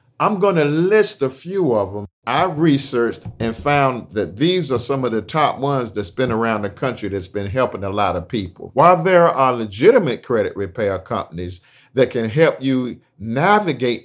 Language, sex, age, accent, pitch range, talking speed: English, male, 50-69, American, 115-150 Hz, 185 wpm